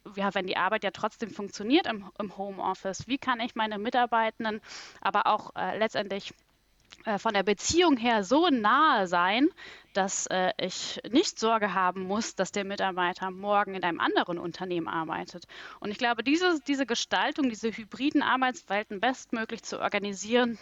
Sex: female